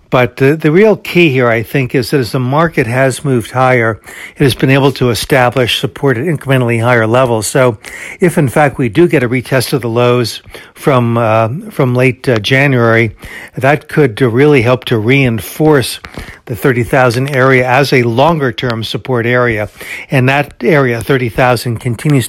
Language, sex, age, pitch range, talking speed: English, male, 60-79, 120-145 Hz, 170 wpm